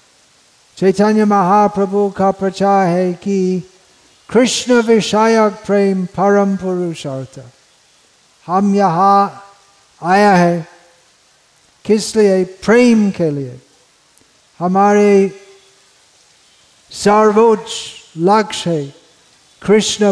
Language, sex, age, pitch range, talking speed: Hindi, male, 50-69, 170-205 Hz, 75 wpm